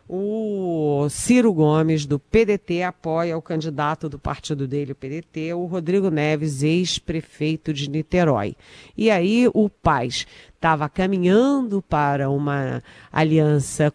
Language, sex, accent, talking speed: Portuguese, female, Brazilian, 120 wpm